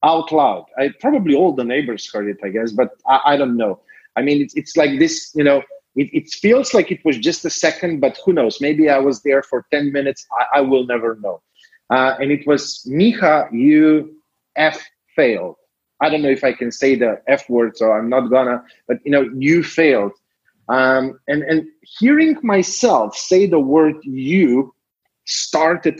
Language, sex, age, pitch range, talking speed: English, male, 30-49, 130-170 Hz, 195 wpm